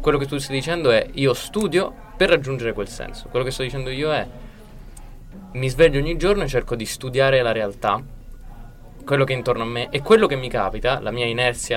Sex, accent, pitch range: male, native, 120-155 Hz